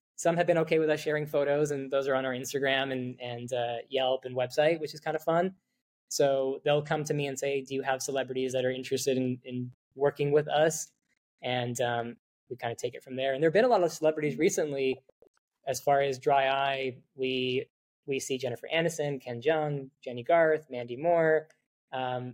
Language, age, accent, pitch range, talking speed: English, 20-39, American, 130-155 Hz, 210 wpm